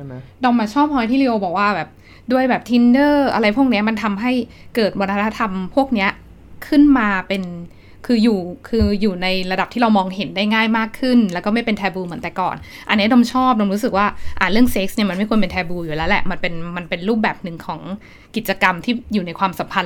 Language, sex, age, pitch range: Thai, female, 20-39, 190-235 Hz